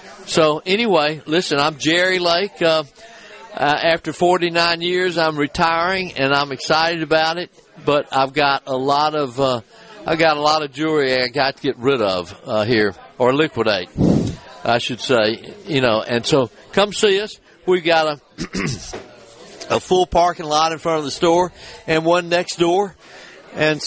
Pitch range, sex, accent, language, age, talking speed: 140-170 Hz, male, American, English, 50-69, 170 wpm